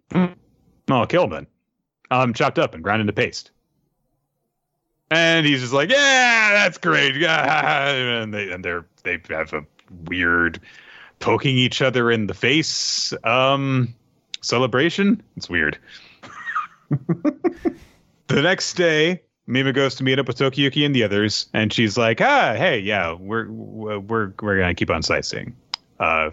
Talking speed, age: 145 wpm, 30-49